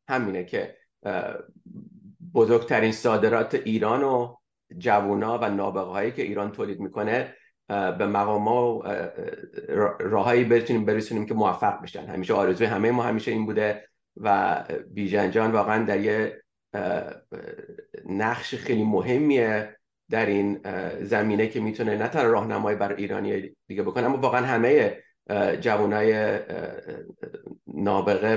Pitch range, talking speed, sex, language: 105-150 Hz, 115 wpm, male, English